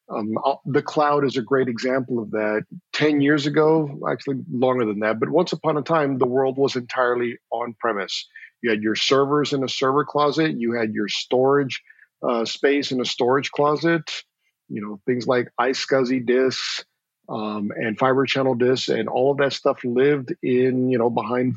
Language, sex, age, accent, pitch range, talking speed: English, male, 50-69, American, 120-145 Hz, 180 wpm